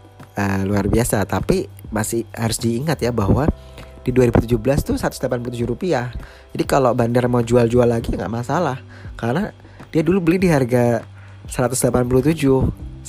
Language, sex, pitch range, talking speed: Indonesian, male, 100-125 Hz, 135 wpm